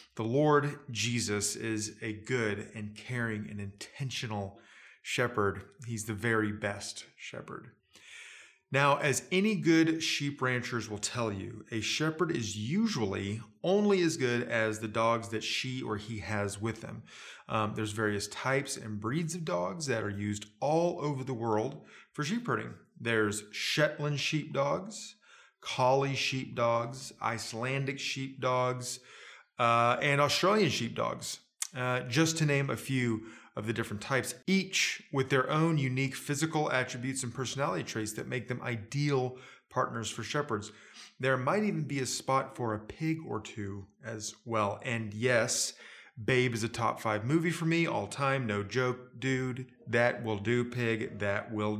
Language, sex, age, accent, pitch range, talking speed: English, male, 30-49, American, 110-140 Hz, 150 wpm